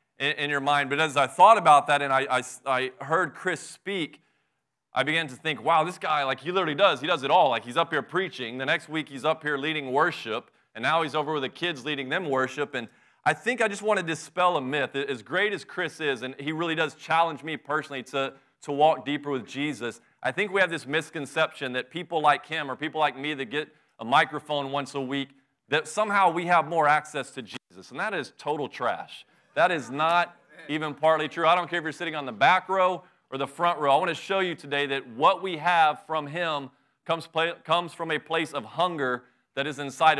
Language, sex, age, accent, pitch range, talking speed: English, male, 30-49, American, 135-165 Hz, 235 wpm